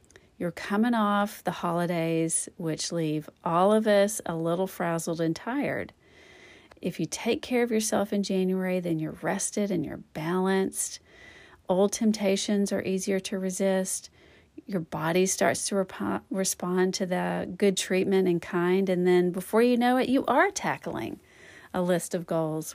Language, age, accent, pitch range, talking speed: English, 40-59, American, 165-210 Hz, 160 wpm